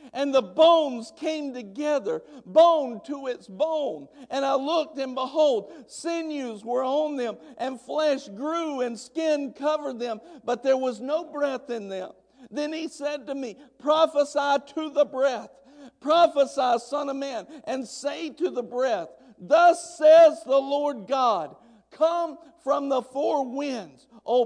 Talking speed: 150 wpm